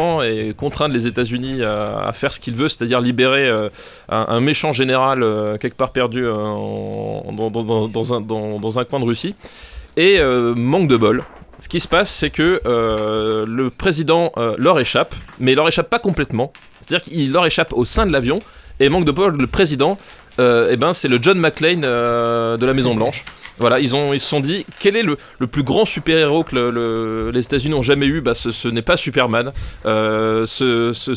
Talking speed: 215 wpm